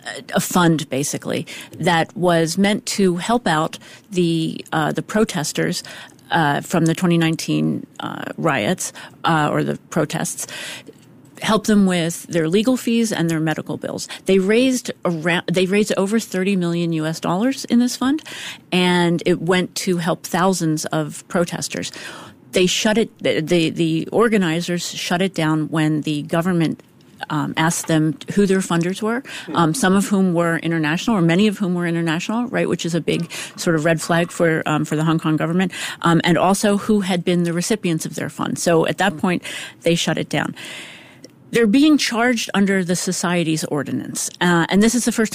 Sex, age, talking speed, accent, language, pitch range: female, 40-59, 175 wpm, American, English, 165-200 Hz